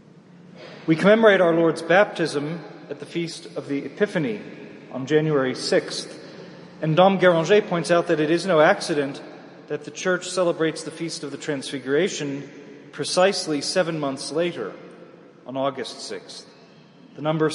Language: English